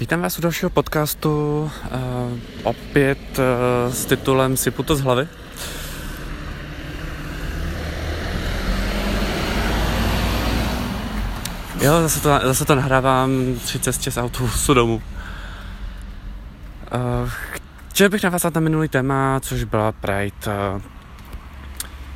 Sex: male